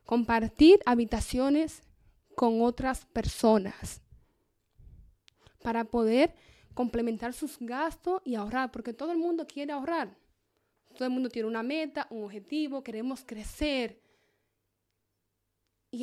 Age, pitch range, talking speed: 10-29, 225-295 Hz, 110 wpm